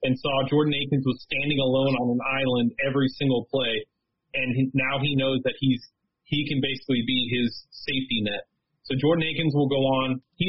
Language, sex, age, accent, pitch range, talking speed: English, male, 30-49, American, 125-145 Hz, 195 wpm